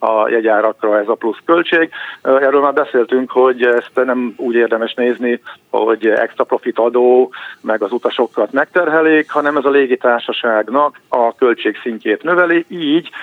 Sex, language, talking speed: male, Hungarian, 145 wpm